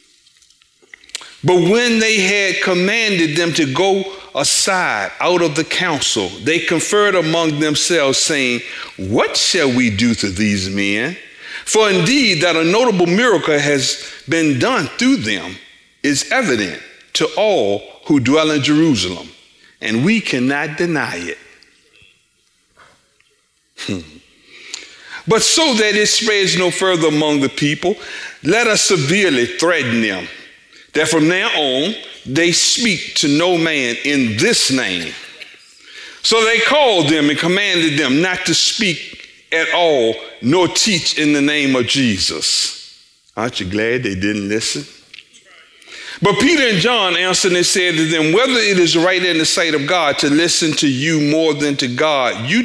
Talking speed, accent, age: 145 wpm, American, 50-69